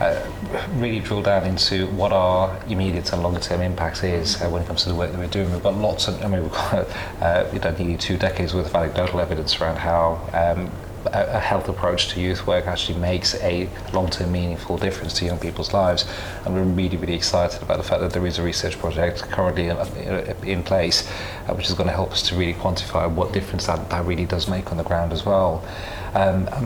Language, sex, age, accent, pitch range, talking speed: English, male, 30-49, British, 90-95 Hz, 230 wpm